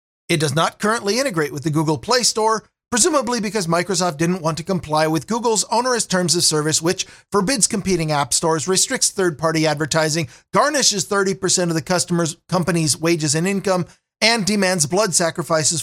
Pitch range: 160-205 Hz